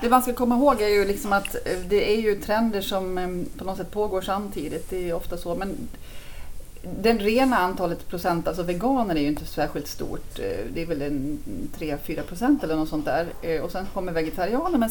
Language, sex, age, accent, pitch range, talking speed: Swedish, female, 30-49, native, 150-190 Hz, 195 wpm